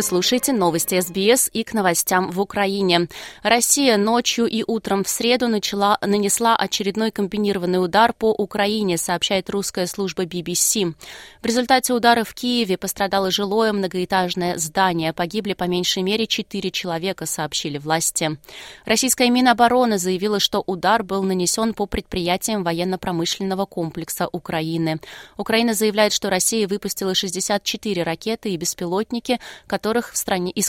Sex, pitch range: female, 180-220 Hz